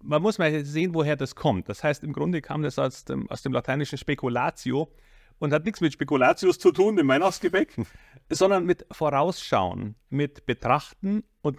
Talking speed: 170 wpm